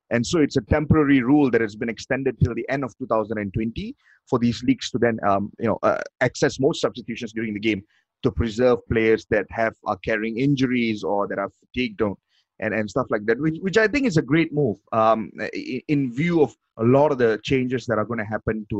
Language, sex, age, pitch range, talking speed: English, male, 30-49, 115-155 Hz, 225 wpm